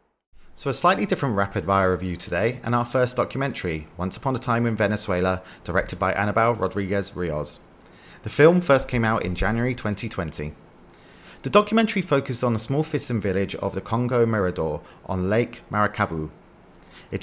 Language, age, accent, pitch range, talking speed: English, 30-49, British, 95-125 Hz, 160 wpm